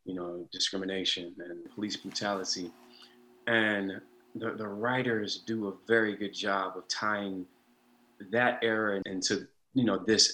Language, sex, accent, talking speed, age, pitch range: English, male, American, 135 wpm, 30-49, 95-120 Hz